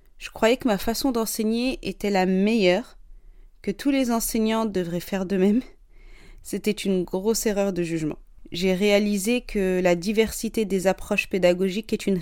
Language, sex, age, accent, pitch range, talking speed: French, female, 30-49, French, 185-220 Hz, 160 wpm